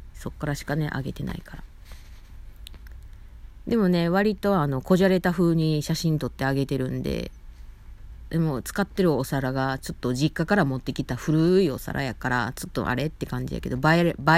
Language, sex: Japanese, female